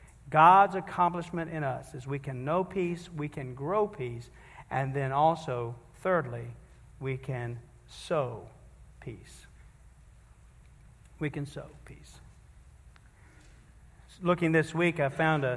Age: 50-69